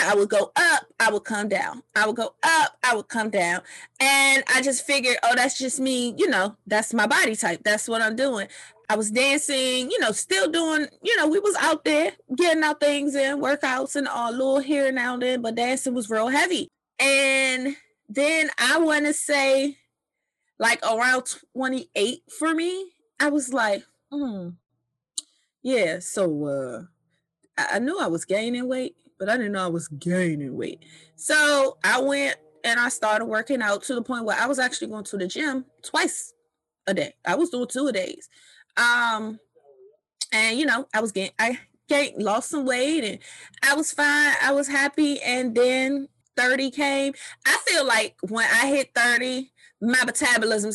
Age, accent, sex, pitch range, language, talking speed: 20-39, American, female, 220-290 Hz, English, 185 wpm